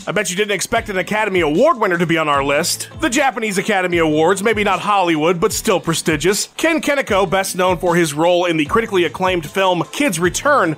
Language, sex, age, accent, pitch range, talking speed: English, male, 30-49, American, 175-245 Hz, 210 wpm